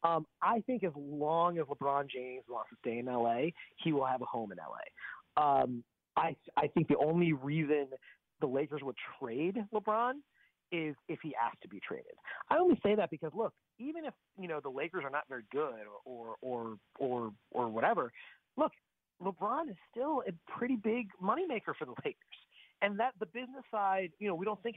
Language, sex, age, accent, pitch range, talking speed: English, male, 30-49, American, 140-225 Hz, 195 wpm